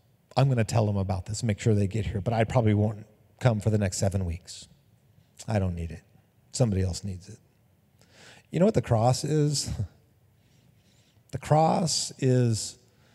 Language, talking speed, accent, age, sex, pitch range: English, 180 wpm, American, 40-59, male, 115-155 Hz